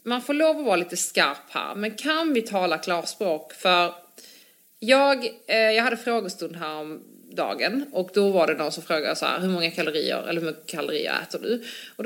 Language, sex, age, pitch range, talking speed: Swedish, female, 30-49, 175-235 Hz, 205 wpm